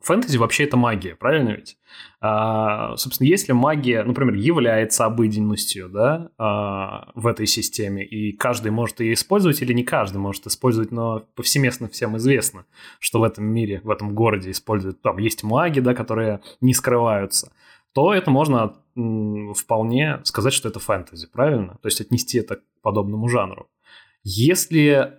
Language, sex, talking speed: Russian, male, 145 wpm